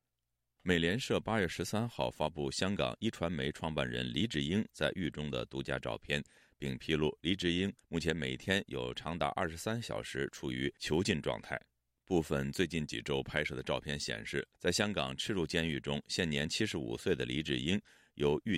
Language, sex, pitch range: Chinese, male, 65-90 Hz